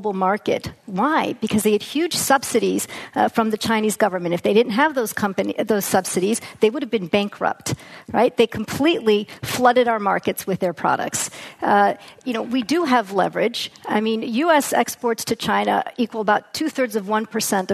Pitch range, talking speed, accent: 200-260 Hz, 175 wpm, American